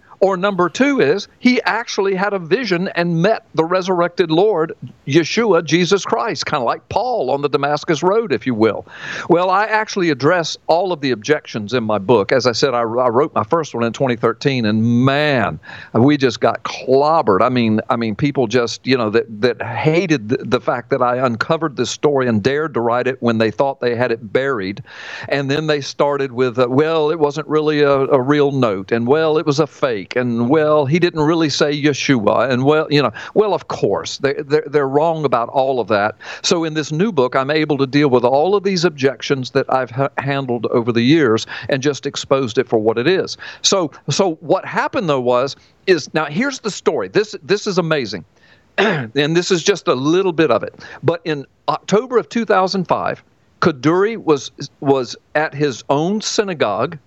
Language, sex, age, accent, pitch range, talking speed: English, male, 50-69, American, 130-175 Hz, 200 wpm